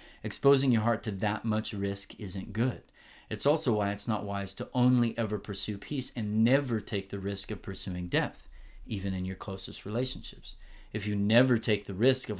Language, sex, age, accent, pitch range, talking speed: English, male, 30-49, American, 100-115 Hz, 195 wpm